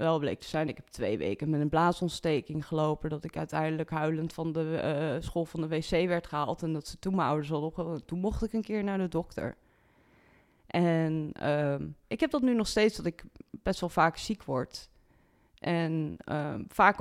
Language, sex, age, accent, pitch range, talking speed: Dutch, female, 20-39, Dutch, 155-185 Hz, 210 wpm